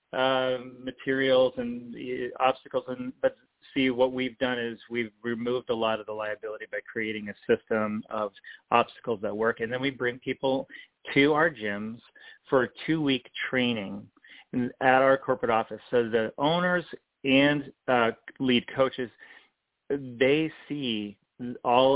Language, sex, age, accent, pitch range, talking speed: English, male, 30-49, American, 110-130 Hz, 145 wpm